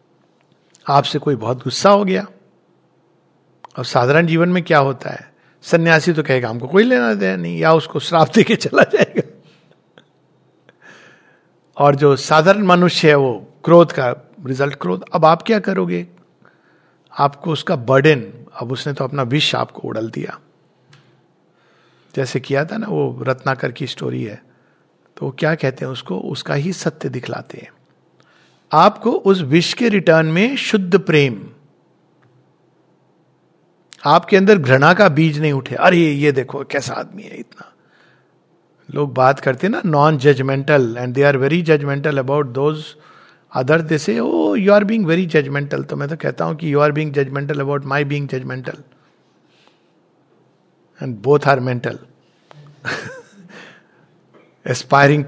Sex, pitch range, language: male, 135-170 Hz, English